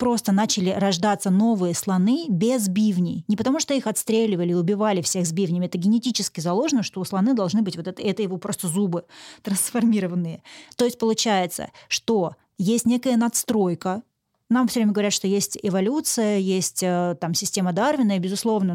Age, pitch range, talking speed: 20-39, 185-230 Hz, 165 wpm